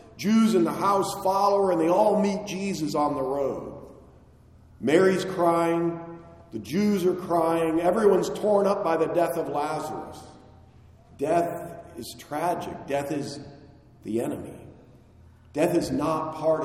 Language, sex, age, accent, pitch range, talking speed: English, male, 40-59, American, 135-195 Hz, 135 wpm